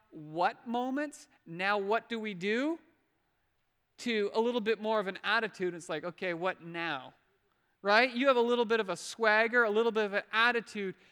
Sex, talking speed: male, 190 wpm